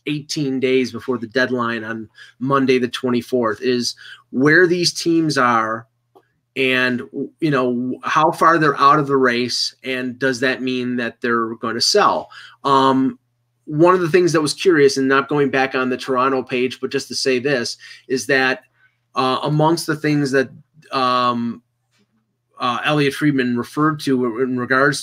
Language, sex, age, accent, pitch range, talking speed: English, male, 30-49, American, 125-150 Hz, 165 wpm